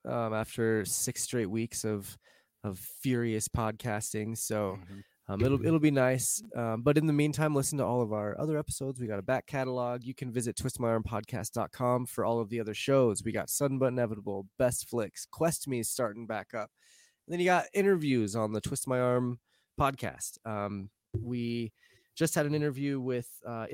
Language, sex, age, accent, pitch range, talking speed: English, male, 20-39, American, 110-130 Hz, 185 wpm